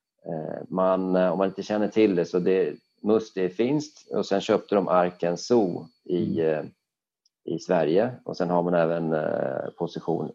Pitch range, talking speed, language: 85-100 Hz, 150 wpm, Swedish